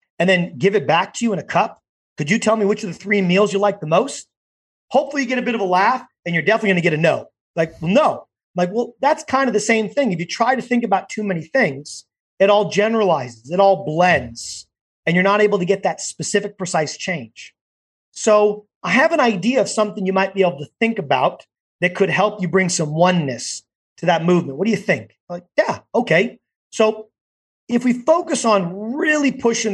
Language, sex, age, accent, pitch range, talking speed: English, male, 30-49, American, 170-220 Hz, 230 wpm